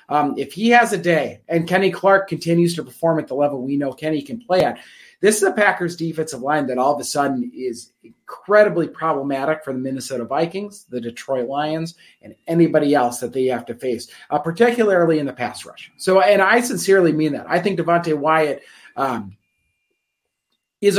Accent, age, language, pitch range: American, 30-49, English, 145-175 Hz